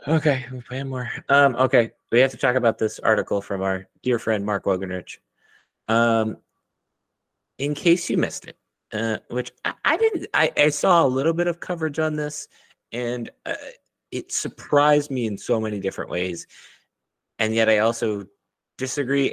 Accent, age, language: American, 30-49, English